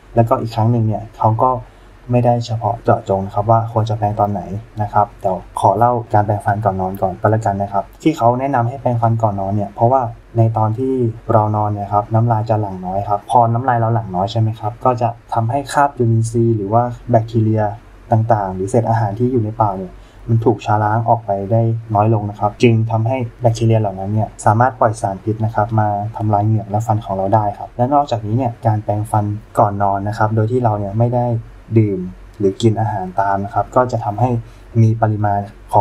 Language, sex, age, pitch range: Thai, male, 20-39, 100-115 Hz